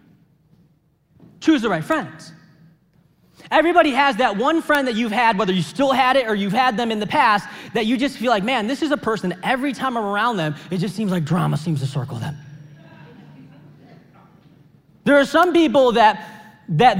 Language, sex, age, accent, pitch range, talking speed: English, male, 20-39, American, 170-260 Hz, 190 wpm